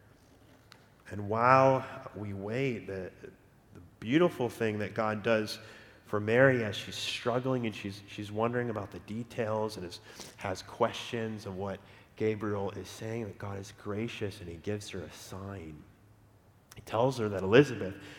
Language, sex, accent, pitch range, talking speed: English, male, American, 95-115 Hz, 155 wpm